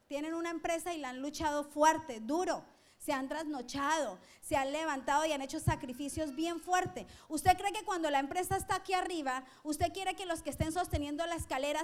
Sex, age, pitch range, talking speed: female, 30-49, 300-350 Hz, 200 wpm